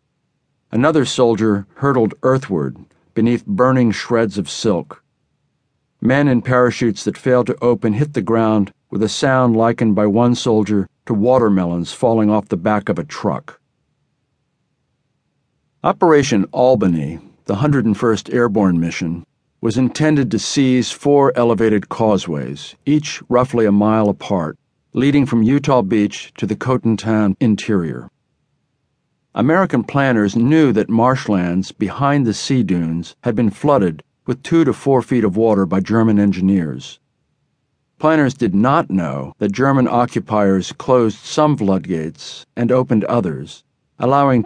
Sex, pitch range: male, 105-125 Hz